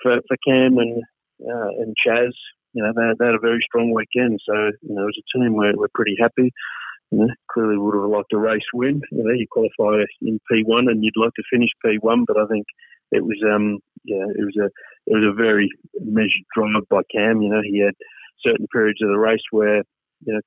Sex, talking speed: male, 240 wpm